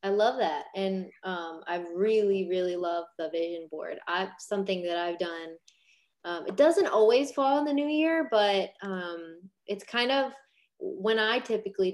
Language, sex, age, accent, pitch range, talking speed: English, female, 20-39, American, 170-200 Hz, 170 wpm